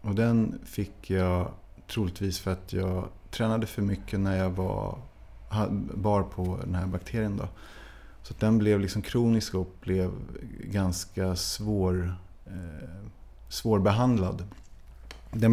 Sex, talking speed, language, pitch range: male, 130 wpm, Swedish, 95-110 Hz